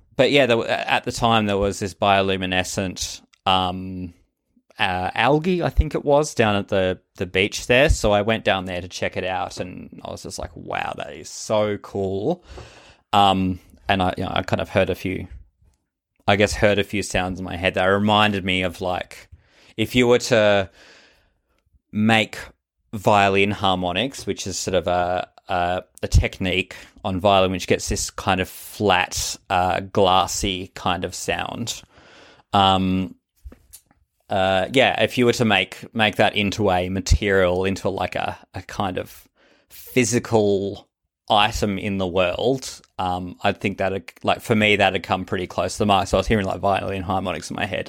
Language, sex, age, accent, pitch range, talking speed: English, male, 20-39, Australian, 90-105 Hz, 180 wpm